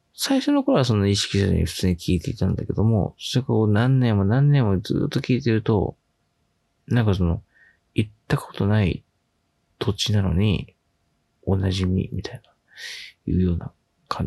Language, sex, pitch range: Japanese, male, 95-115 Hz